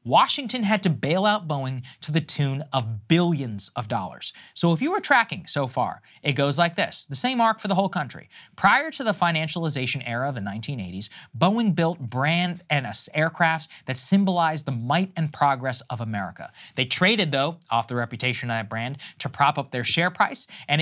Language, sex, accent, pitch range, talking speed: English, male, American, 130-185 Hz, 195 wpm